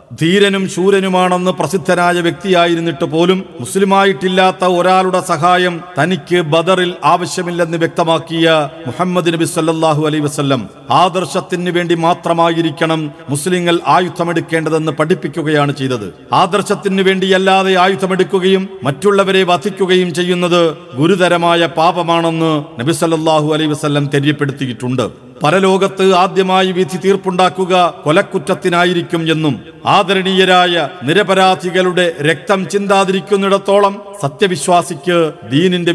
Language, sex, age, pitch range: Malayalam, male, 50-69, 150-185 Hz